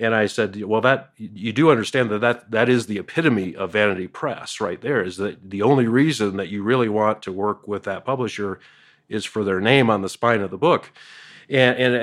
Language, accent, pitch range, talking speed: English, American, 105-125 Hz, 225 wpm